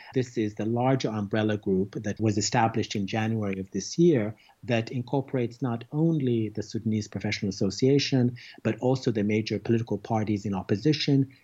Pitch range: 100-125 Hz